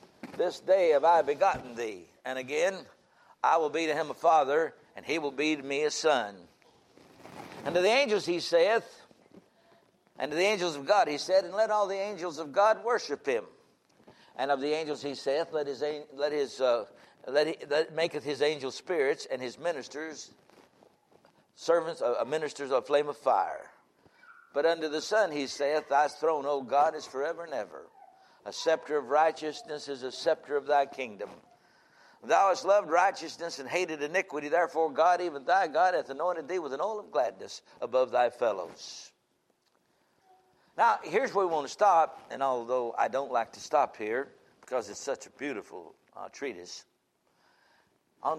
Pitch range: 145-200 Hz